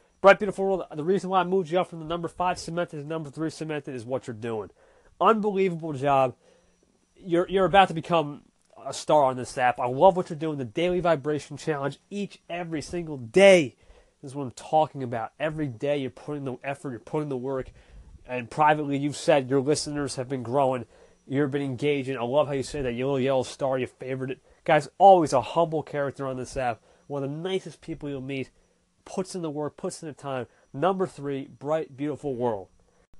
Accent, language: American, English